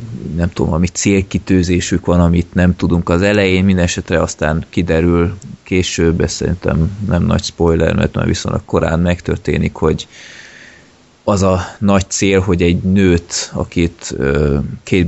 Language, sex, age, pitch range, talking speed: Hungarian, male, 20-39, 85-95 Hz, 135 wpm